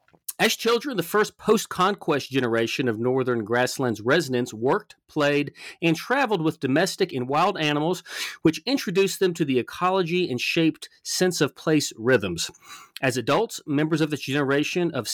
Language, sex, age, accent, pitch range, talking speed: English, male, 40-59, American, 140-185 Hz, 145 wpm